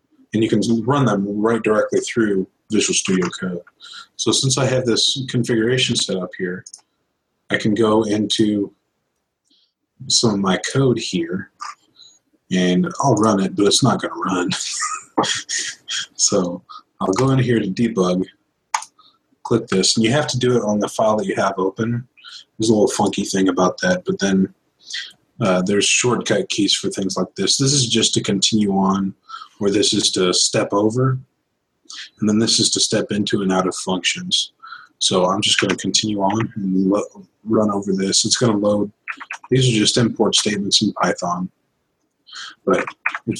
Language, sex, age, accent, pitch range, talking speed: English, male, 30-49, American, 95-120 Hz, 175 wpm